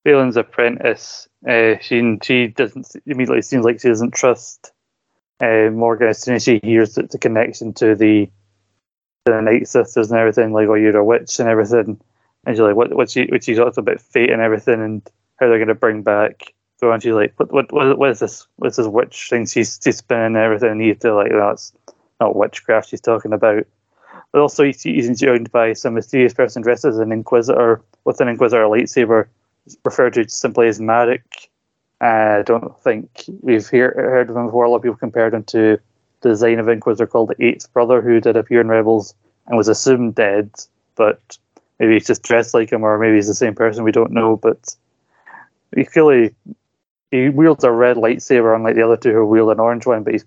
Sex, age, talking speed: male, 20-39, 210 wpm